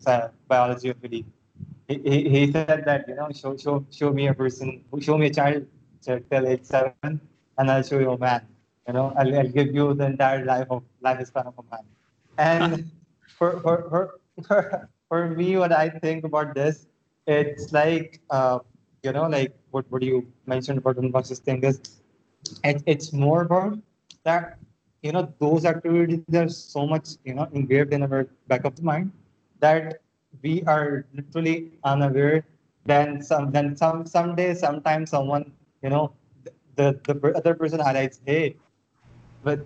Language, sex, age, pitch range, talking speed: Urdu, male, 20-39, 130-155 Hz, 170 wpm